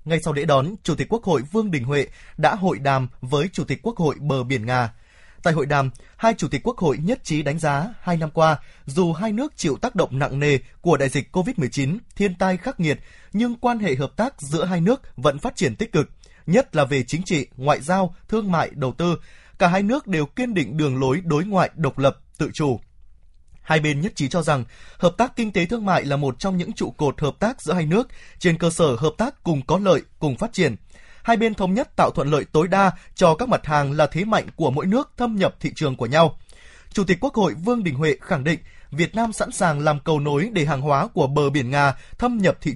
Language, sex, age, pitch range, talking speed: Vietnamese, male, 20-39, 145-205 Hz, 245 wpm